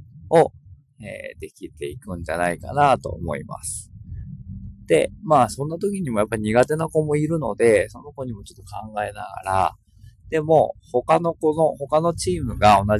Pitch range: 100-165 Hz